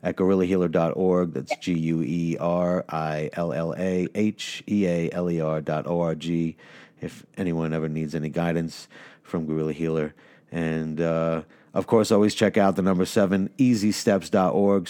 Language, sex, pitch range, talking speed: English, male, 80-95 Hz, 100 wpm